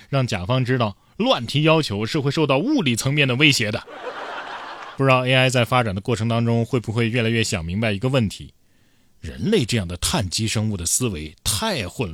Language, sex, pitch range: Chinese, male, 110-160 Hz